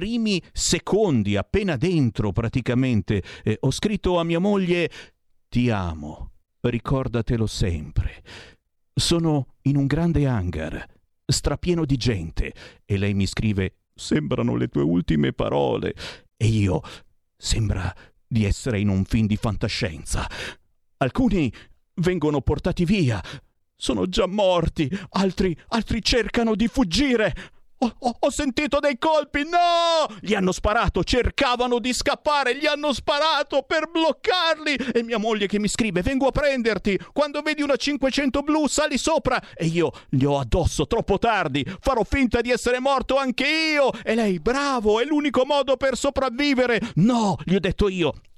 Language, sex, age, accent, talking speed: Italian, male, 50-69, native, 140 wpm